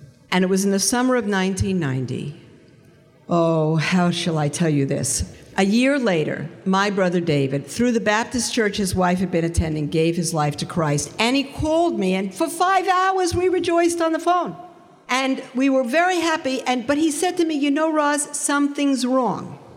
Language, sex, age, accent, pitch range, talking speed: English, female, 50-69, American, 190-300 Hz, 195 wpm